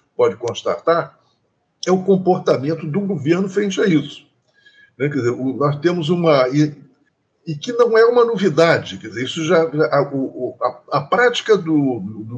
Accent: Brazilian